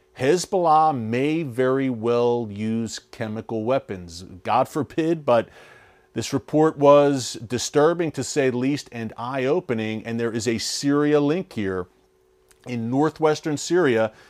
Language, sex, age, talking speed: English, male, 40-59, 125 wpm